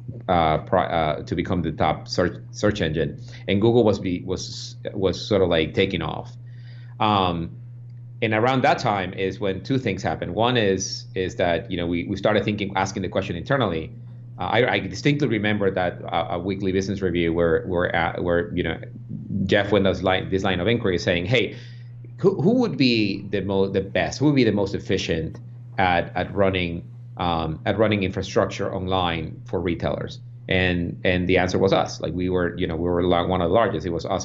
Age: 30-49